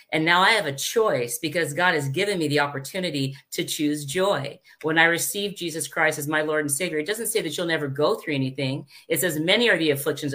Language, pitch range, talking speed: English, 155-200 Hz, 240 wpm